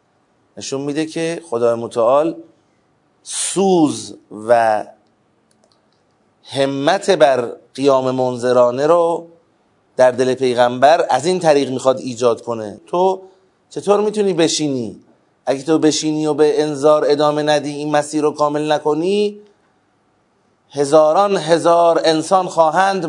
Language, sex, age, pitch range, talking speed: Persian, male, 30-49, 130-175 Hz, 110 wpm